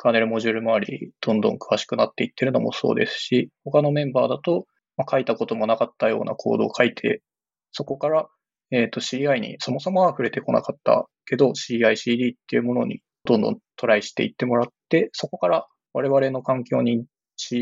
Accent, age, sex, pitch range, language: native, 20-39, male, 120-160 Hz, Japanese